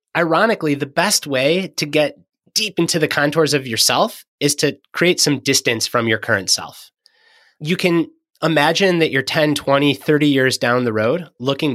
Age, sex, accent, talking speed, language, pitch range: 30-49, male, American, 175 wpm, English, 125-185 Hz